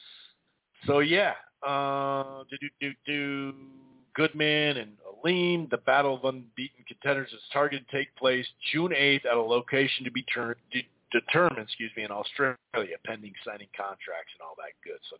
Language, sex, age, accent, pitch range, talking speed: English, male, 40-59, American, 120-145 Hz, 160 wpm